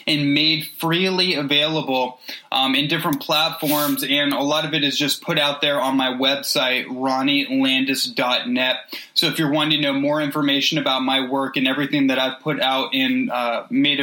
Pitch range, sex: 140-170 Hz, male